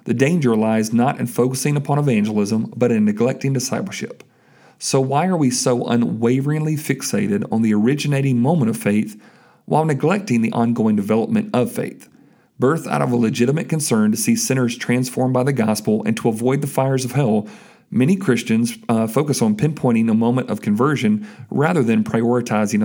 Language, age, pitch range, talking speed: English, 40-59, 115-155 Hz, 170 wpm